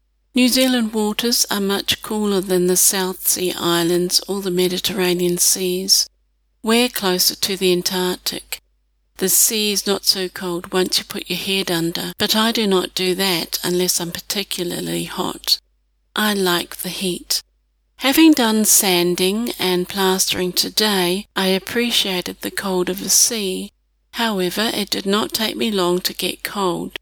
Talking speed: 155 wpm